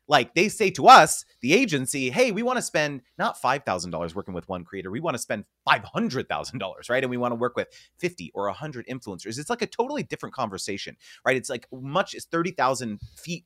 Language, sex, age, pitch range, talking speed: English, male, 30-49, 110-170 Hz, 210 wpm